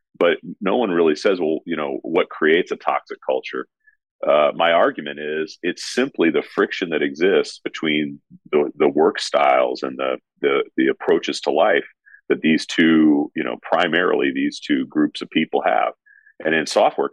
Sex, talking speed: male, 175 wpm